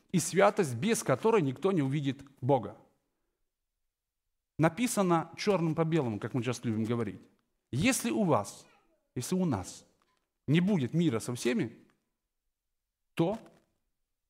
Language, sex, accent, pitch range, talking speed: Russian, male, native, 125-195 Hz, 120 wpm